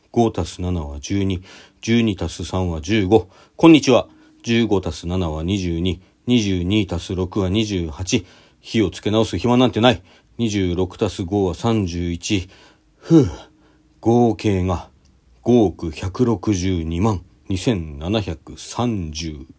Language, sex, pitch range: Japanese, male, 90-125 Hz